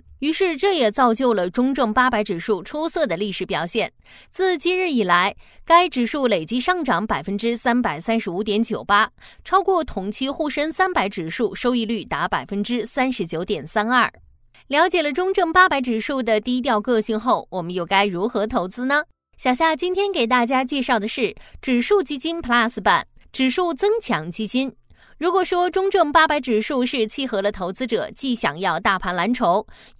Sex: female